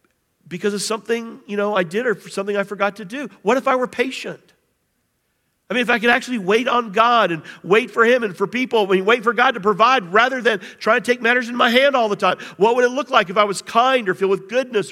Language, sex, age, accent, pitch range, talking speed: English, male, 50-69, American, 190-240 Hz, 265 wpm